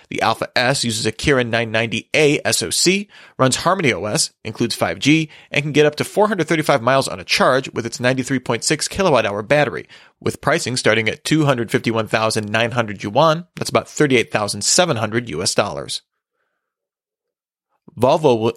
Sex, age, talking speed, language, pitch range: male, 30-49, 135 wpm, English, 115-150 Hz